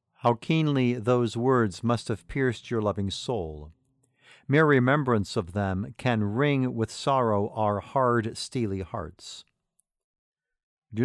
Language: English